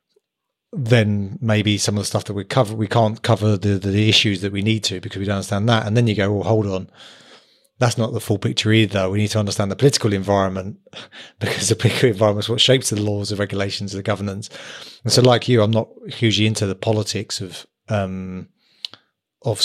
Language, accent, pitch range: English, British, 100-115 Hz